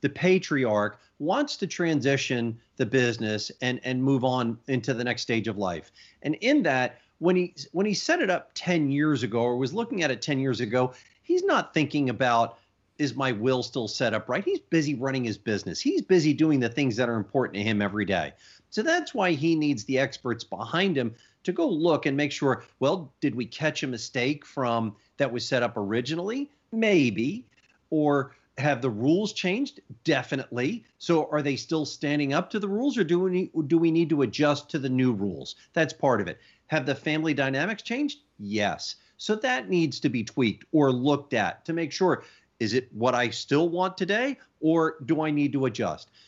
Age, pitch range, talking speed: 40-59, 120-165 Hz, 200 wpm